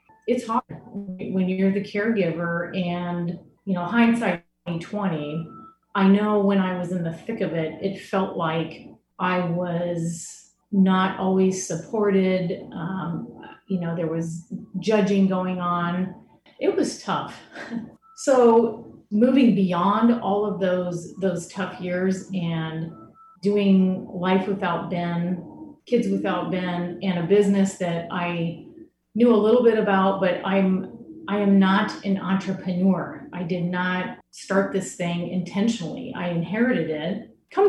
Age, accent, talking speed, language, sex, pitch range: 30-49, American, 135 wpm, English, female, 175-210 Hz